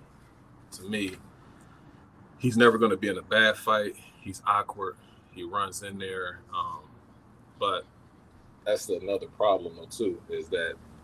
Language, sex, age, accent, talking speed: English, male, 20-39, American, 140 wpm